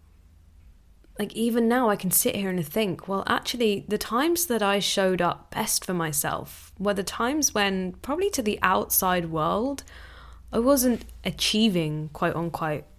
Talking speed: 150 wpm